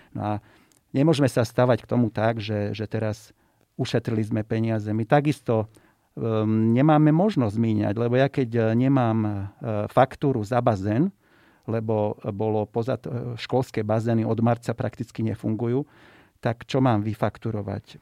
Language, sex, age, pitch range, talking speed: Slovak, male, 40-59, 110-130 Hz, 140 wpm